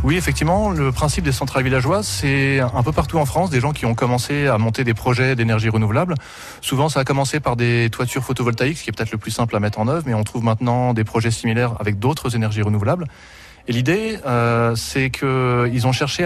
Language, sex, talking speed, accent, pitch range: French, male, 225 wpm, French, 115-145 Hz